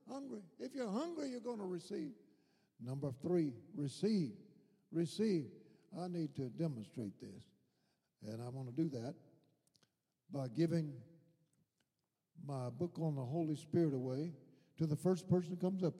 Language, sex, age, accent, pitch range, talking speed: English, male, 60-79, American, 145-185 Hz, 145 wpm